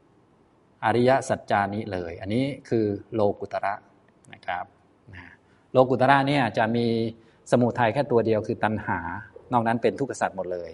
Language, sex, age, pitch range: Thai, male, 20-39, 100-130 Hz